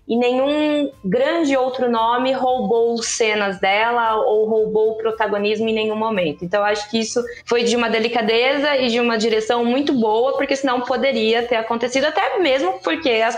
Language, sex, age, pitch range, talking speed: English, female, 20-39, 215-265 Hz, 175 wpm